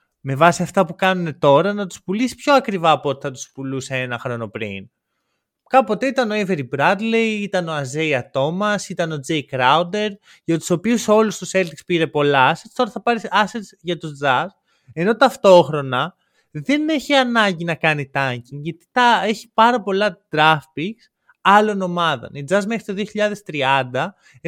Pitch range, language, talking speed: 140-210 Hz, Greek, 170 wpm